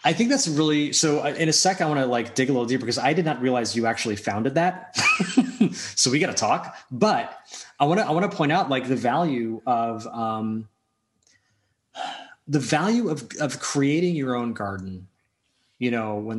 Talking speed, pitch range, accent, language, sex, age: 200 wpm, 110-150 Hz, American, English, male, 30-49